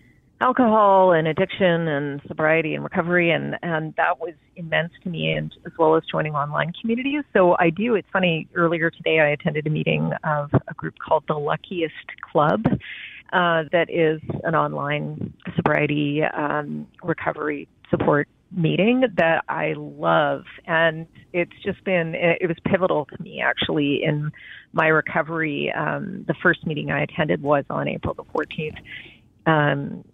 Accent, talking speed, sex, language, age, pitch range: American, 155 wpm, female, English, 40-59, 150-180 Hz